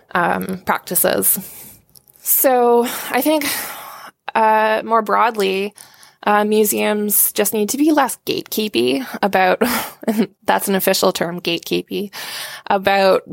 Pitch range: 175-215 Hz